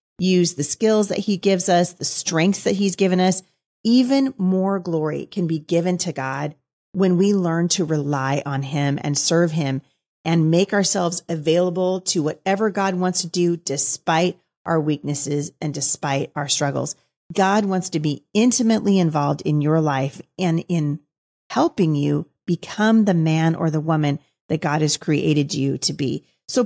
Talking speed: 170 wpm